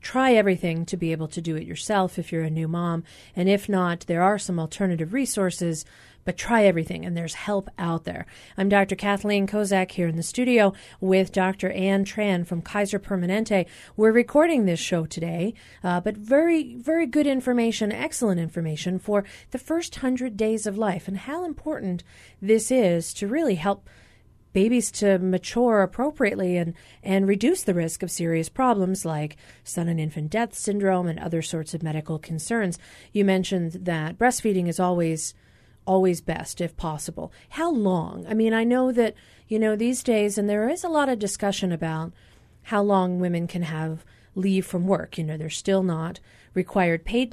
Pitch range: 170-220 Hz